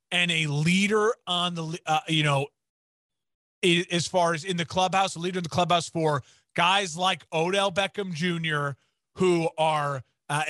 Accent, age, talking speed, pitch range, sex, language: American, 30-49, 160 wpm, 160-190 Hz, male, English